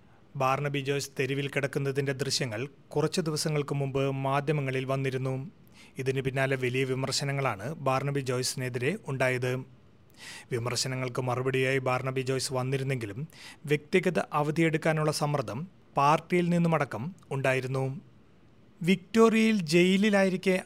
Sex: male